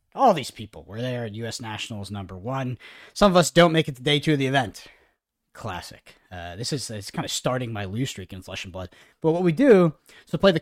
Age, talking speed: 30-49, 255 wpm